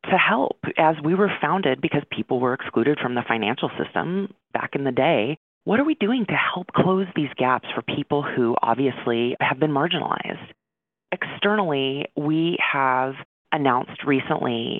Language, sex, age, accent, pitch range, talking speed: English, female, 30-49, American, 125-155 Hz, 160 wpm